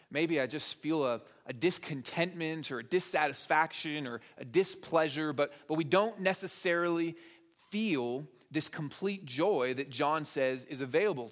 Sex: male